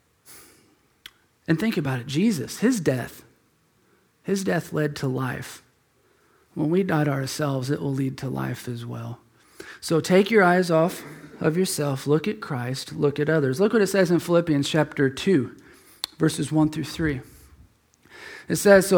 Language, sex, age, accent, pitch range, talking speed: English, male, 40-59, American, 150-190 Hz, 160 wpm